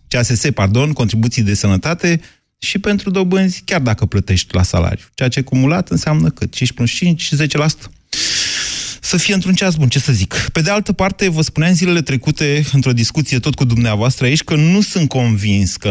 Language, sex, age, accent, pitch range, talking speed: Romanian, male, 30-49, native, 100-135 Hz, 180 wpm